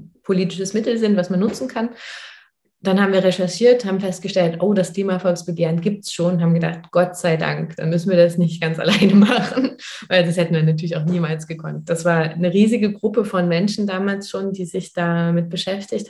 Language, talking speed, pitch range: German, 200 wpm, 170-200 Hz